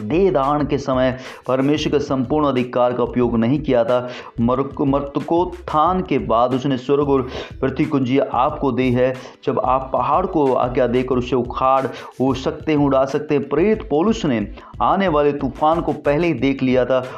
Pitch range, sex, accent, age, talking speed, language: 125-145 Hz, male, Indian, 30-49, 175 wpm, English